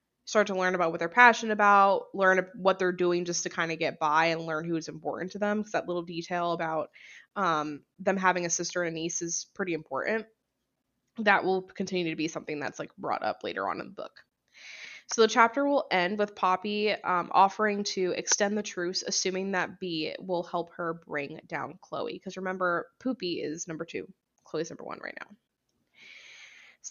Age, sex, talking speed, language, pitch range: 20-39, female, 200 wpm, English, 170-205 Hz